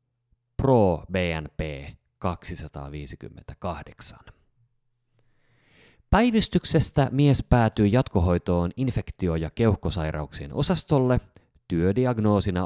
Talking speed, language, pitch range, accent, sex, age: 55 wpm, Finnish, 85-120 Hz, native, male, 30-49